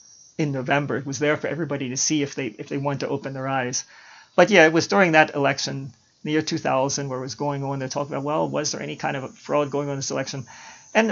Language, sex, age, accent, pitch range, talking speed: English, male, 40-59, American, 135-165 Hz, 265 wpm